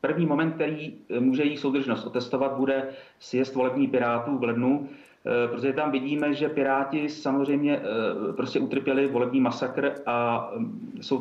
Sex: male